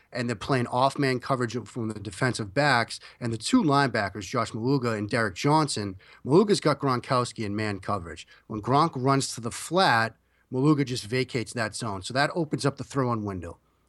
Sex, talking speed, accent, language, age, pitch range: male, 180 wpm, American, English, 30-49, 115-140 Hz